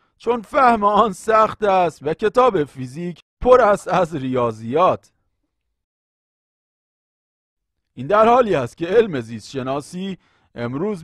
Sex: male